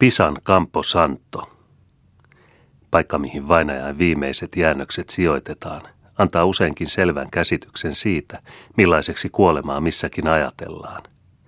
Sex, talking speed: male, 90 wpm